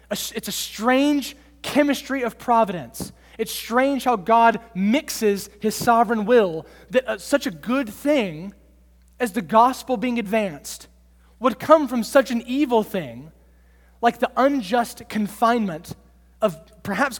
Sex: male